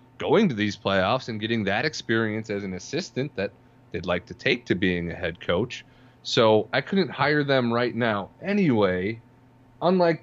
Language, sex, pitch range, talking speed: English, male, 105-130 Hz, 175 wpm